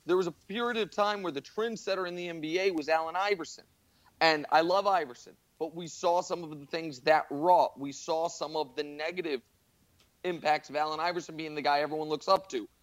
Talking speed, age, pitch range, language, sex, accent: 210 wpm, 30-49, 150-180 Hz, English, male, American